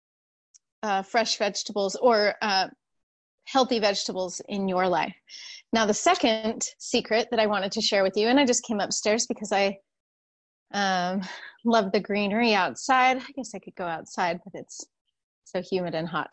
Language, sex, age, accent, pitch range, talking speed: English, female, 30-49, American, 195-230 Hz, 160 wpm